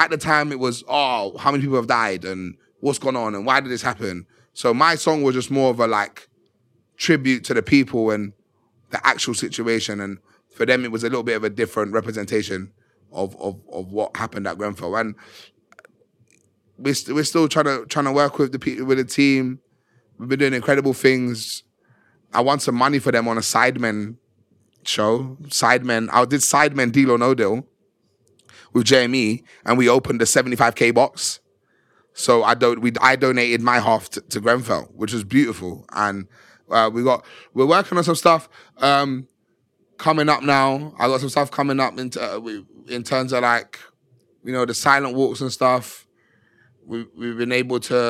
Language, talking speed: English, 195 wpm